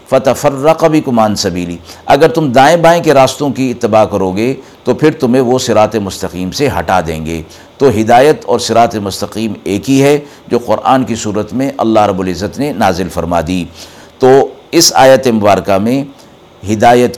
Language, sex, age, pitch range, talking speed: Urdu, male, 50-69, 105-145 Hz, 170 wpm